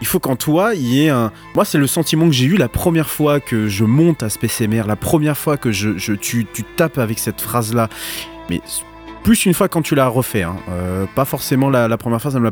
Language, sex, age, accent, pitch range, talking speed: French, male, 30-49, French, 100-140 Hz, 260 wpm